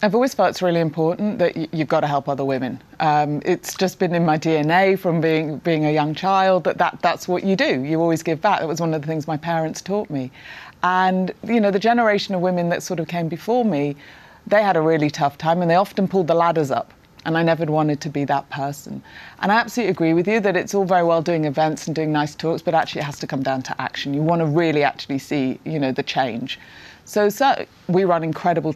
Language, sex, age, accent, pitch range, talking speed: English, female, 30-49, British, 150-190 Hz, 255 wpm